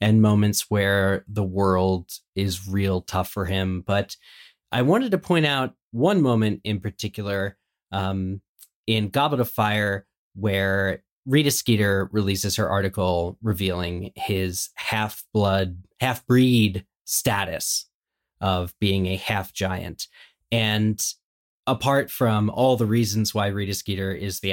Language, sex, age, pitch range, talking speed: English, male, 30-49, 100-125 Hz, 125 wpm